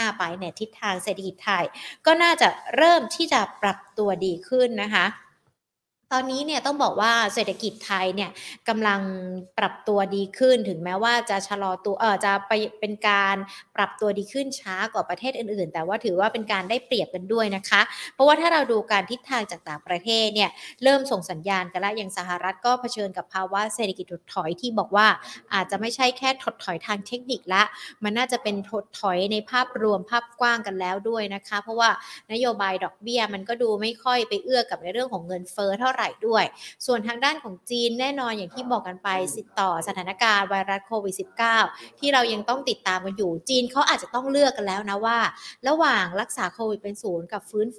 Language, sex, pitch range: Thai, female, 195-245 Hz